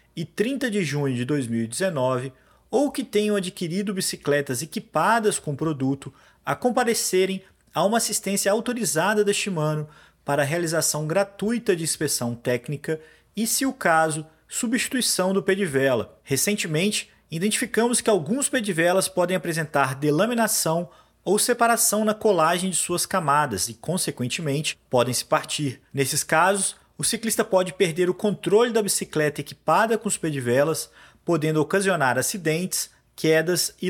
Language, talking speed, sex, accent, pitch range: Portuguese, 135 wpm, male, Brazilian, 150-210 Hz